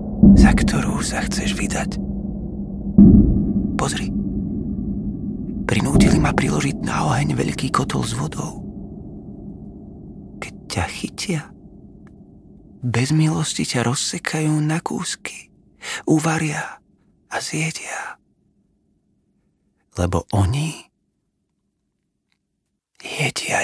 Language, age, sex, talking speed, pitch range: Slovak, 30-49, male, 70 wpm, 90-125 Hz